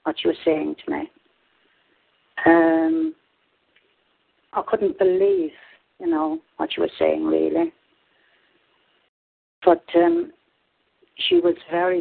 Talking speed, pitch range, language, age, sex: 110 wpm, 160-200 Hz, English, 60-79, female